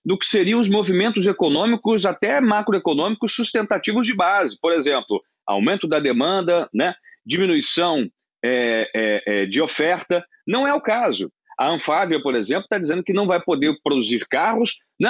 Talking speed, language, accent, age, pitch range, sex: 145 wpm, Portuguese, Brazilian, 40-59, 175-255 Hz, male